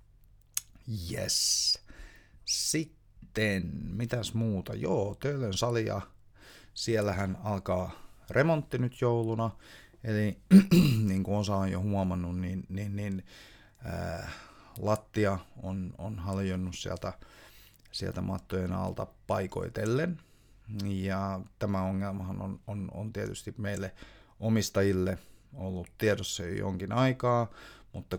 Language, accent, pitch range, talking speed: Finnish, native, 95-110 Hz, 100 wpm